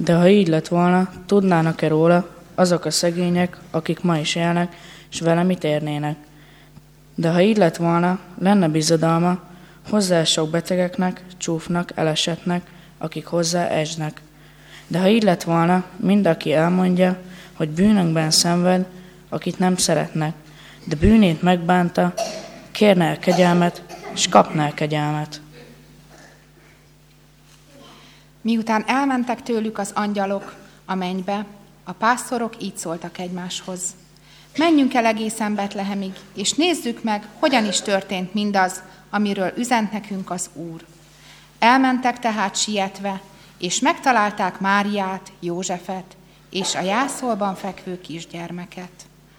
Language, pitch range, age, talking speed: Hungarian, 170-205 Hz, 20-39, 115 wpm